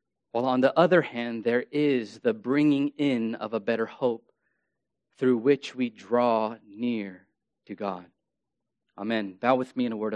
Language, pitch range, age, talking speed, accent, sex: English, 115-135 Hz, 30-49, 165 wpm, American, male